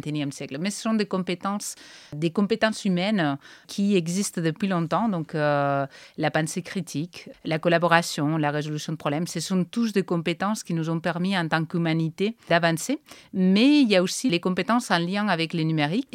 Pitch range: 160-200 Hz